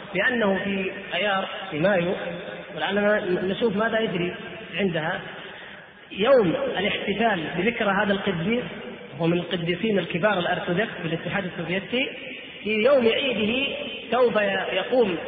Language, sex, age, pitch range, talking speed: Arabic, female, 30-49, 195-230 Hz, 110 wpm